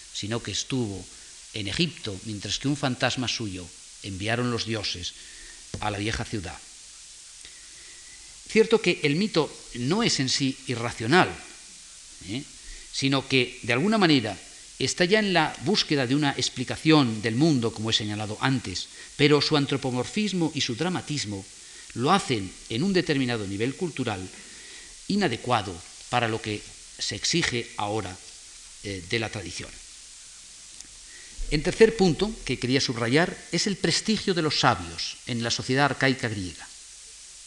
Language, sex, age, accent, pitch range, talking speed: Spanish, male, 40-59, Spanish, 110-145 Hz, 140 wpm